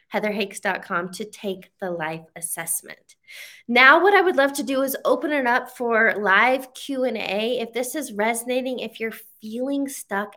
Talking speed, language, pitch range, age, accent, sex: 160 wpm, English, 205-260 Hz, 20-39, American, female